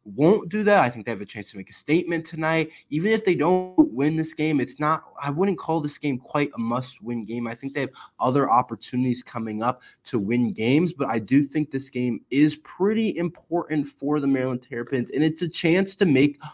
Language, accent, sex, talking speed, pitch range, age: English, American, male, 230 wpm, 135-175 Hz, 20-39